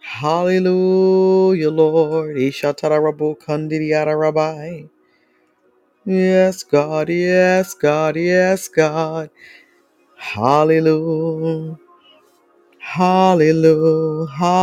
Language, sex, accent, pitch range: English, female, American, 145-160 Hz